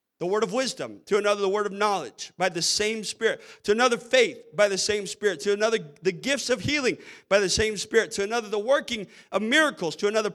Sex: male